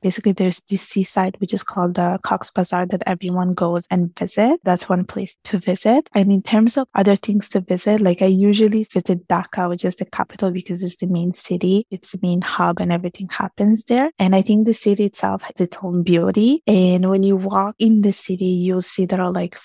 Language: English